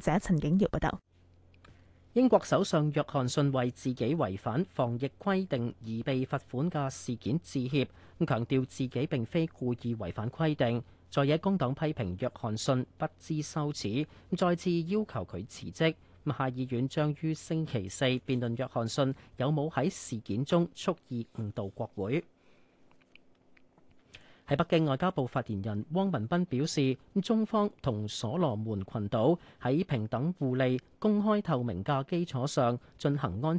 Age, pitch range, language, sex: 40-59, 115-160 Hz, Chinese, male